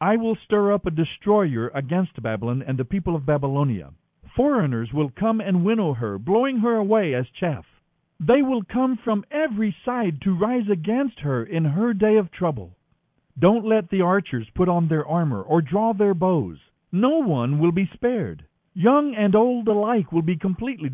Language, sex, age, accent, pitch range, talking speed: English, male, 60-79, American, 145-220 Hz, 180 wpm